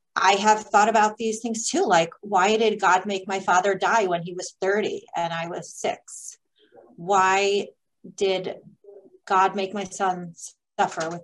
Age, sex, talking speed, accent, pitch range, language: 30-49, female, 165 wpm, American, 175-215 Hz, English